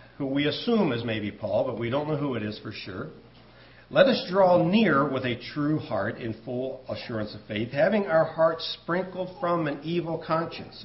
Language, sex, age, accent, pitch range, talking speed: English, male, 50-69, American, 110-150 Hz, 200 wpm